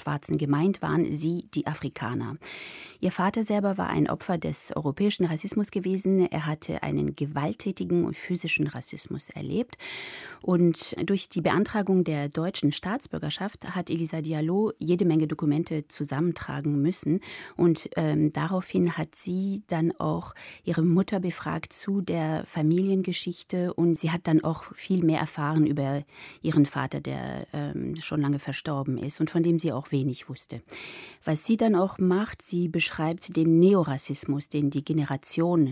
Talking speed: 145 wpm